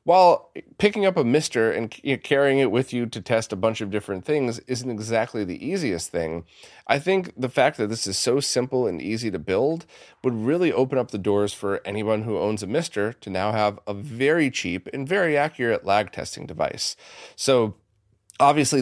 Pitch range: 100-135 Hz